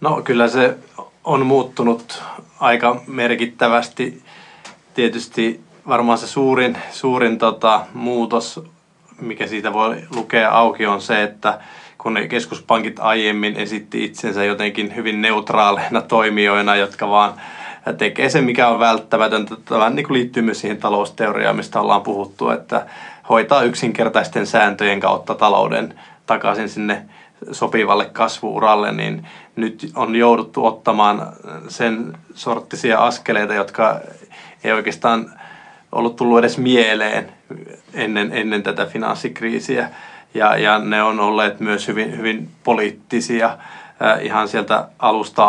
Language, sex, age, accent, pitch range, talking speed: Finnish, male, 20-39, native, 105-120 Hz, 115 wpm